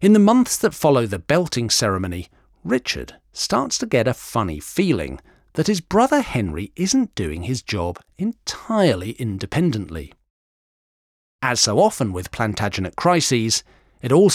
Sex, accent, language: male, British, English